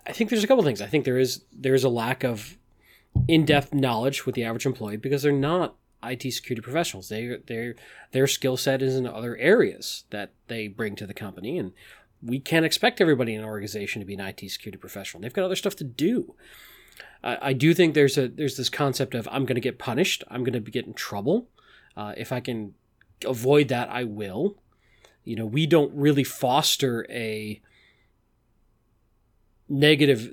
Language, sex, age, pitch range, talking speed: English, male, 30-49, 110-140 Hz, 200 wpm